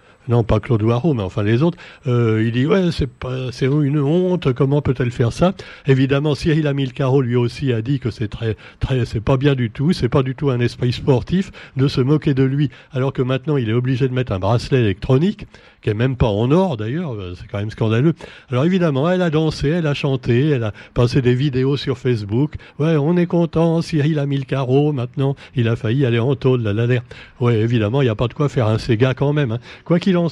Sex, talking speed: male, 240 wpm